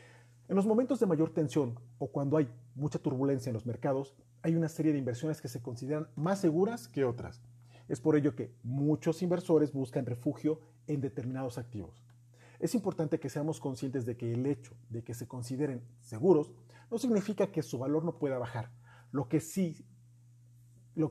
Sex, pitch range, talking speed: male, 120-160 Hz, 180 wpm